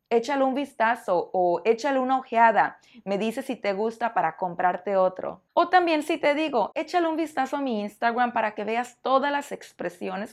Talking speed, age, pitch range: 185 wpm, 30-49, 205-265 Hz